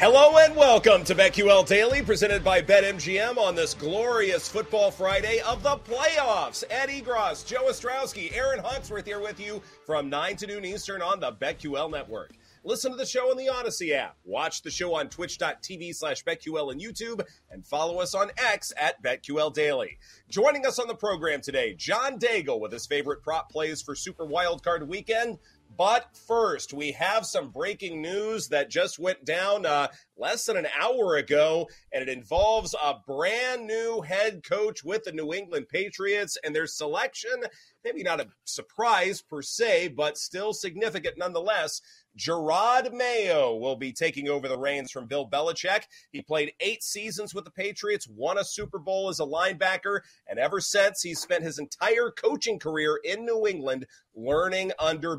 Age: 30-49